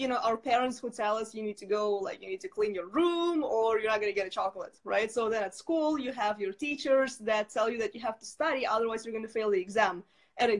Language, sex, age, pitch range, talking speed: English, female, 20-39, 220-260 Hz, 295 wpm